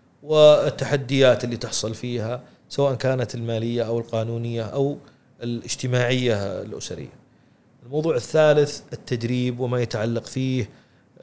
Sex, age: male, 40-59